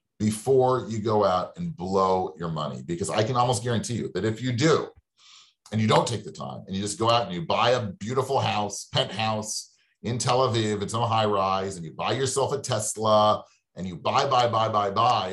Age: 40-59